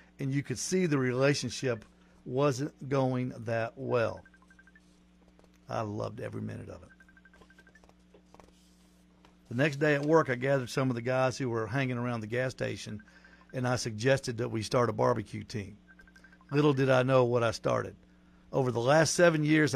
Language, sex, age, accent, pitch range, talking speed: English, male, 50-69, American, 105-140 Hz, 165 wpm